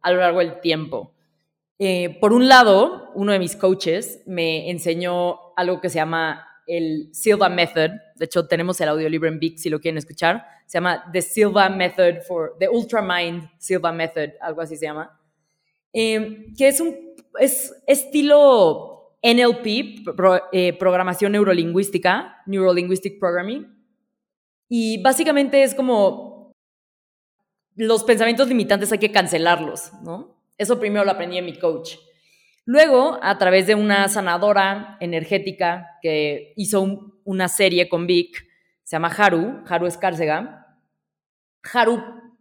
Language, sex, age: Spanish, female, 20-39